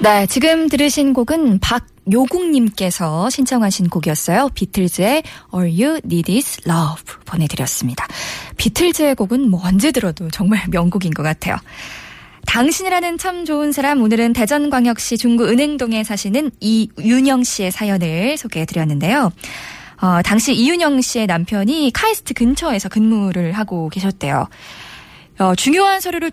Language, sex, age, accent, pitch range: Korean, female, 20-39, native, 185-280 Hz